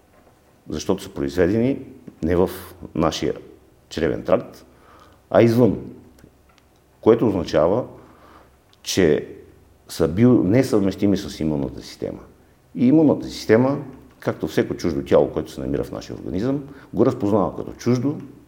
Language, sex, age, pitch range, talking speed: Bulgarian, male, 50-69, 70-110 Hz, 115 wpm